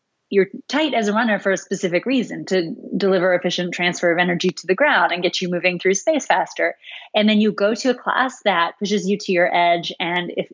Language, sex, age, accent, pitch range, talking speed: English, female, 30-49, American, 175-215 Hz, 230 wpm